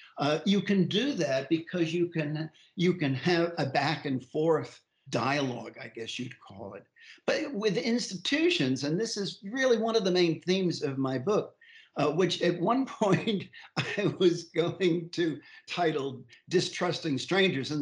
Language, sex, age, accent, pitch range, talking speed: English, male, 60-79, American, 150-185 Hz, 160 wpm